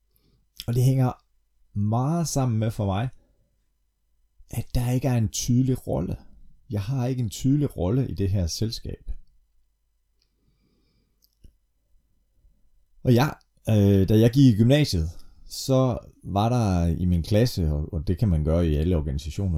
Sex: male